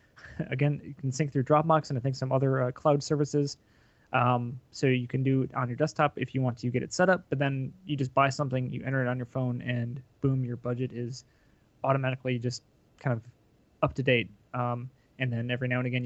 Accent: American